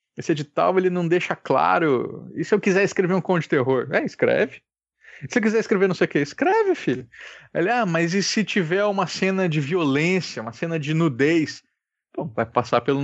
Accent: Brazilian